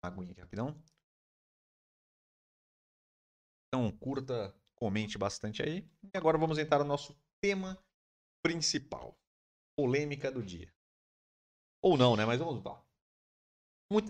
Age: 30-49